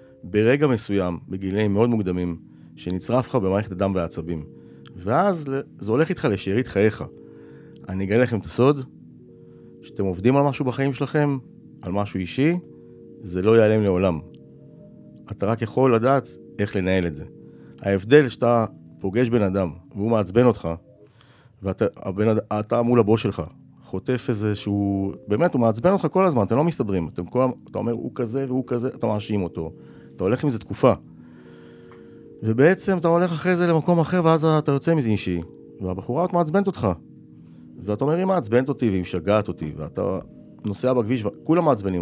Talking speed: 160 wpm